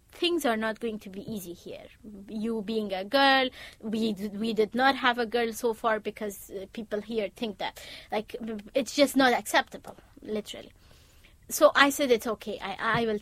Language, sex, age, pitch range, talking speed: English, female, 20-39, 210-245 Hz, 180 wpm